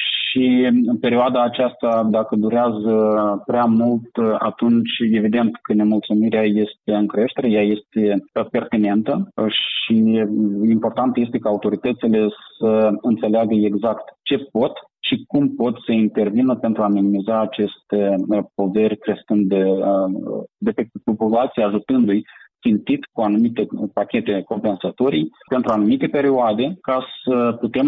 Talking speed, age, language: 120 wpm, 30-49, Romanian